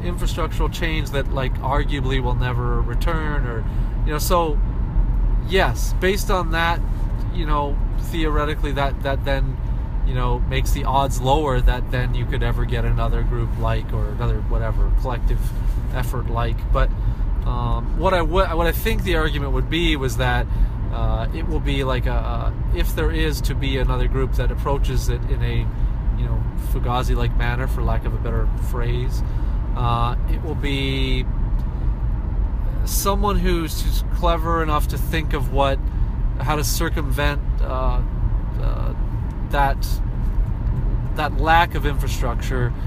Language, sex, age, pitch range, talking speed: English, male, 30-49, 115-135 Hz, 155 wpm